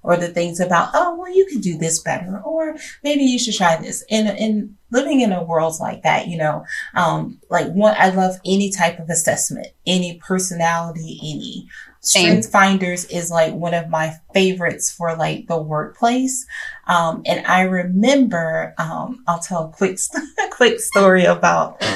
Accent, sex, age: American, female, 30-49